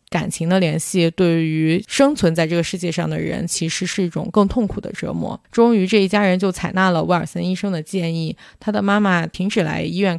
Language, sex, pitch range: Chinese, female, 170-215 Hz